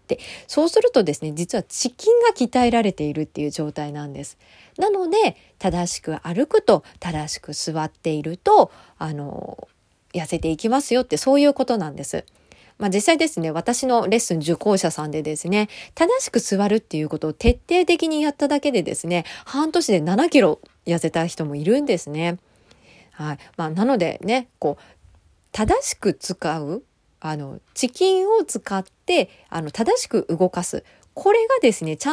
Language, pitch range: Japanese, 160-265 Hz